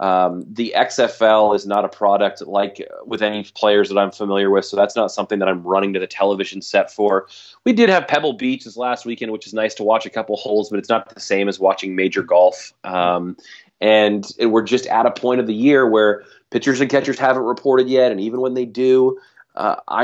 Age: 30-49